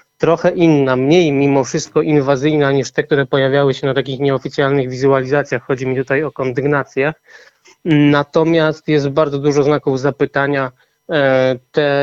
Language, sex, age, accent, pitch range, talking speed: Polish, male, 20-39, native, 135-155 Hz, 135 wpm